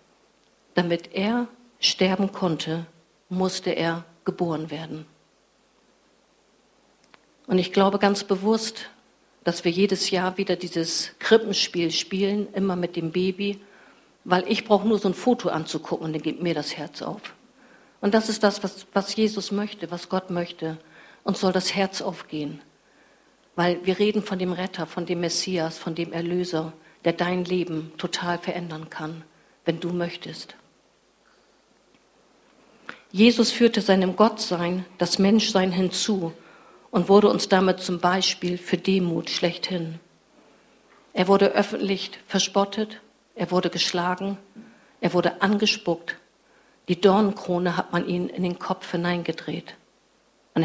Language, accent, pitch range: German, German, 170-195 Hz